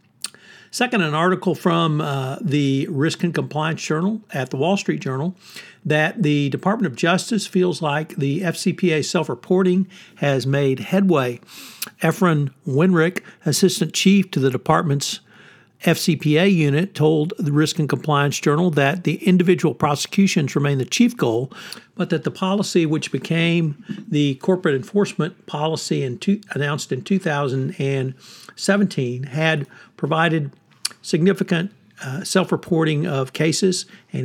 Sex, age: male, 60-79